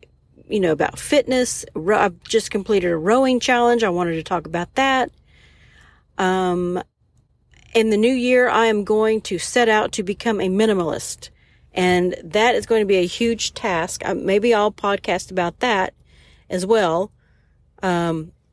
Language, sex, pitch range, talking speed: English, female, 180-225 Hz, 155 wpm